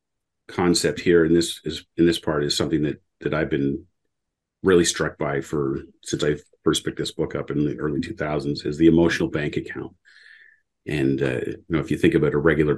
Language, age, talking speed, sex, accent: English, 40-59, 205 wpm, male, American